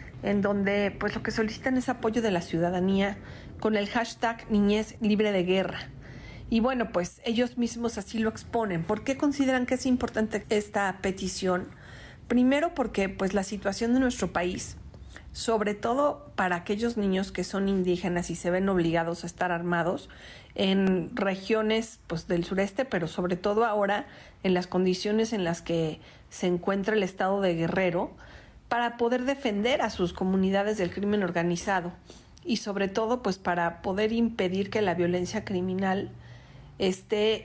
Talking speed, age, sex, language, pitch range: 160 wpm, 40-59, female, Spanish, 180-220 Hz